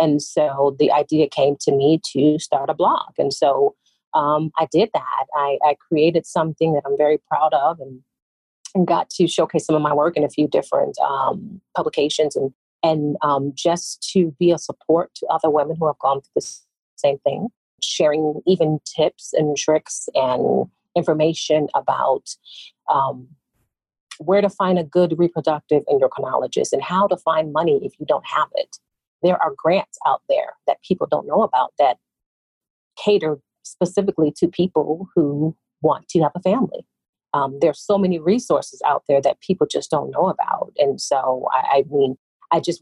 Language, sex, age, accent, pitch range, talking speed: English, female, 40-59, American, 145-170 Hz, 180 wpm